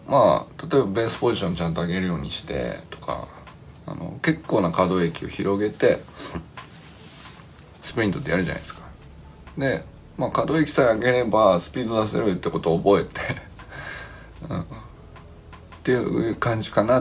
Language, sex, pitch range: Japanese, male, 85-130 Hz